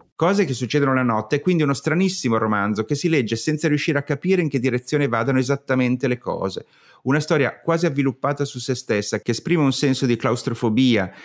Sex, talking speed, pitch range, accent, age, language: male, 195 wpm, 115-155 Hz, native, 30-49, Italian